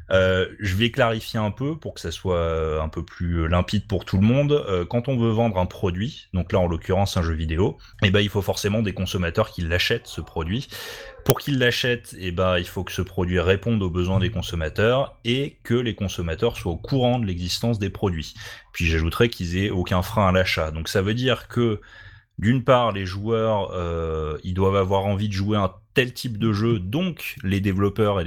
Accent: French